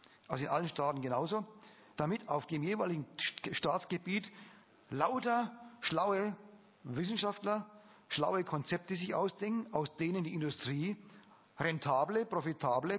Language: German